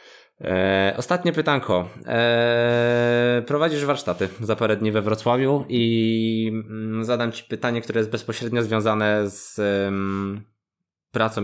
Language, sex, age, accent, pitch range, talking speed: Polish, male, 20-39, native, 95-125 Hz, 100 wpm